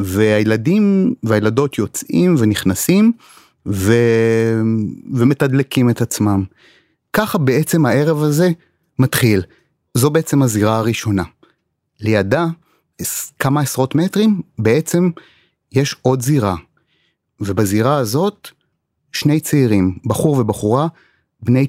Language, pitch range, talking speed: Hebrew, 105-145 Hz, 90 wpm